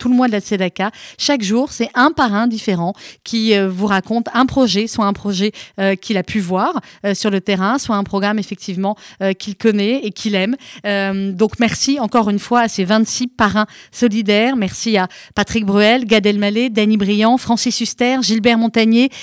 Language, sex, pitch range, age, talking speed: French, female, 210-255 Hz, 30-49, 195 wpm